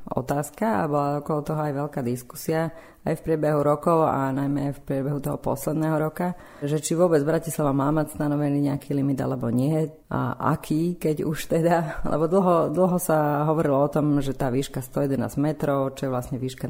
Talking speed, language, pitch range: 185 wpm, Slovak, 135-155 Hz